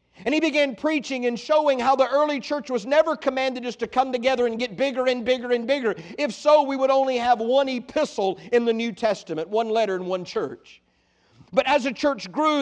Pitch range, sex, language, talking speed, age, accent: 175-250 Hz, male, English, 220 wpm, 50-69, American